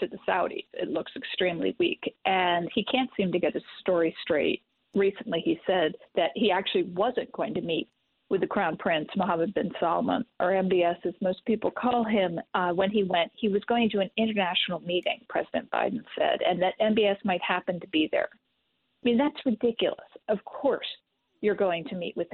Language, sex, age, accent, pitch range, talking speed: English, female, 40-59, American, 180-235 Hz, 195 wpm